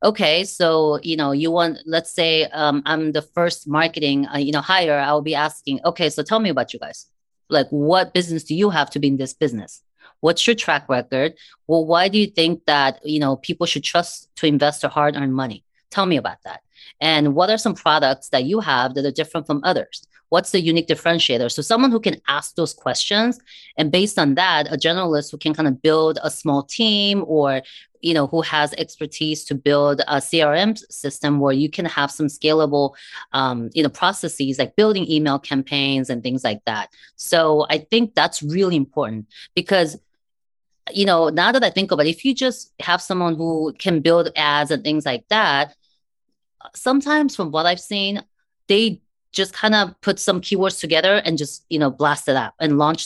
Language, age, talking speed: English, 30-49, 200 wpm